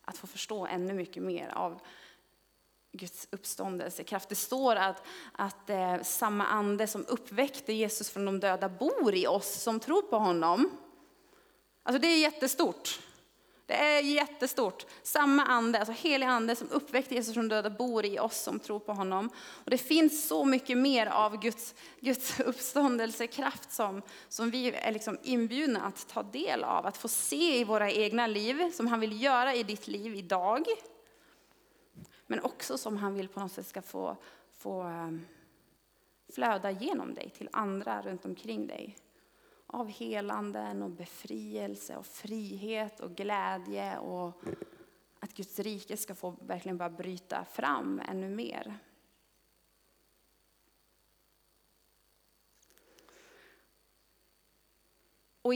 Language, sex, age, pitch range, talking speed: Swedish, female, 20-39, 185-250 Hz, 135 wpm